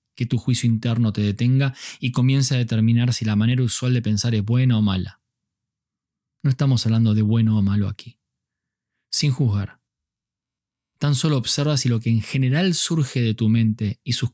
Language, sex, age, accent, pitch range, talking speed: Spanish, male, 20-39, Argentinian, 105-125 Hz, 185 wpm